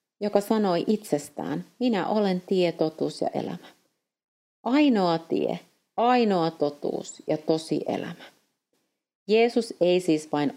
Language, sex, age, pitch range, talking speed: Finnish, female, 30-49, 160-220 Hz, 115 wpm